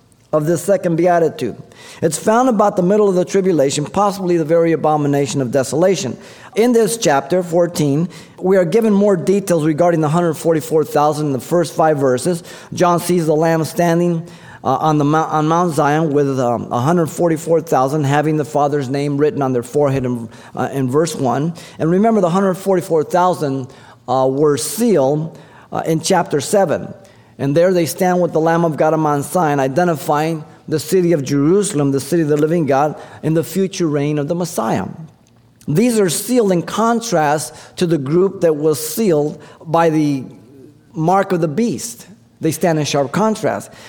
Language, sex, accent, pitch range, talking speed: English, male, American, 145-180 Hz, 170 wpm